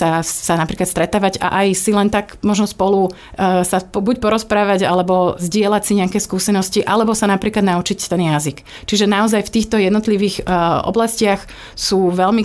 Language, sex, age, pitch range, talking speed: Slovak, female, 30-49, 175-205 Hz, 170 wpm